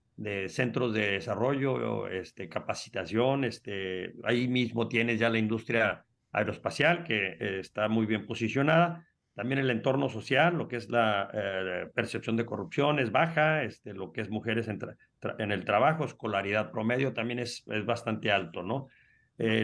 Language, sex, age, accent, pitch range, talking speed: Spanish, male, 50-69, Mexican, 115-155 Hz, 165 wpm